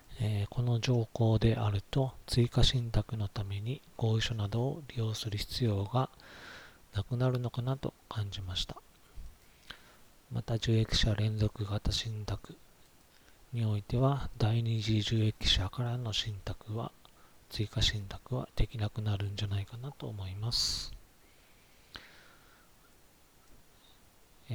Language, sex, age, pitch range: Japanese, male, 40-59, 105-125 Hz